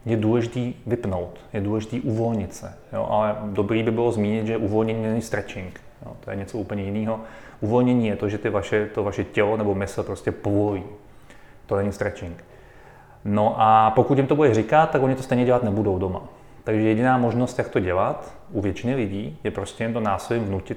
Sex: male